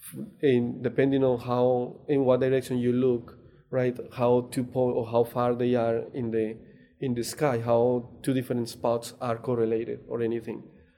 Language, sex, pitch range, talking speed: English, male, 120-135 Hz, 170 wpm